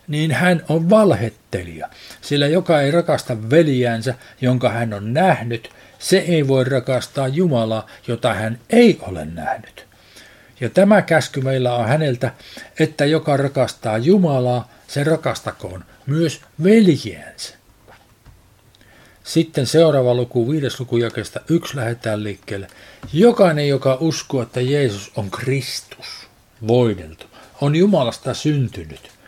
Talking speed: 115 wpm